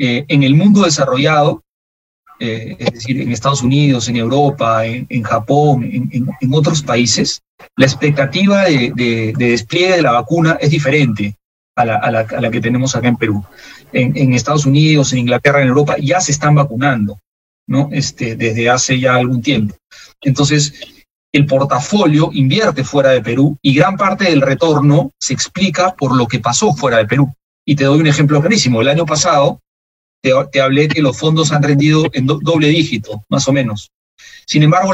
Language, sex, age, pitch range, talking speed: Spanish, male, 30-49, 125-155 Hz, 170 wpm